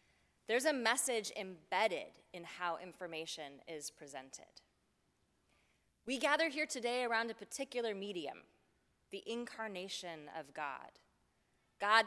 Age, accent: 20-39, American